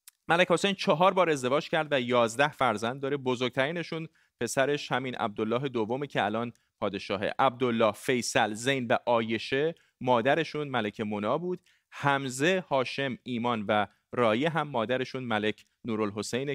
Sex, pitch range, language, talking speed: male, 115-150 Hz, Persian, 125 wpm